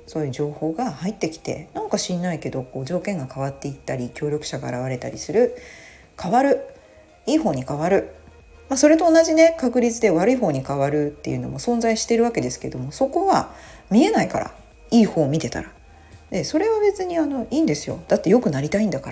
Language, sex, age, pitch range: Japanese, female, 40-59, 135-225 Hz